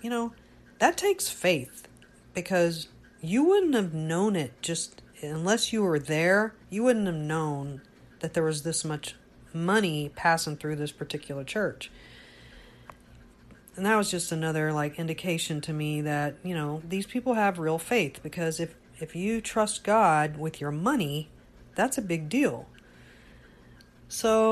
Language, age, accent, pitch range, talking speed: English, 40-59, American, 150-180 Hz, 150 wpm